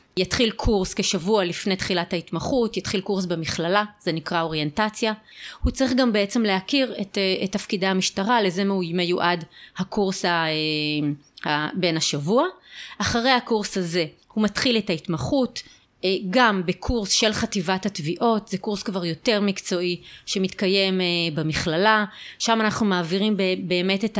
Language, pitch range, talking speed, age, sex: Hebrew, 175-215 Hz, 125 wpm, 30-49, female